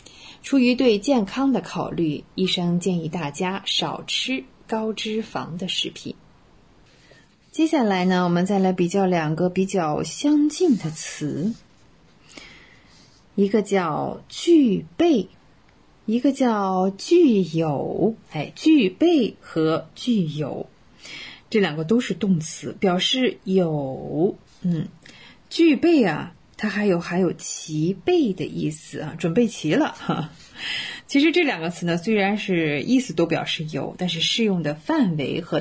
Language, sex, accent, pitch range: Chinese, female, native, 165-235 Hz